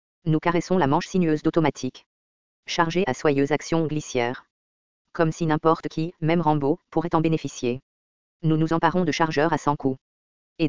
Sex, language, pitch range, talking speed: female, English, 125-165 Hz, 165 wpm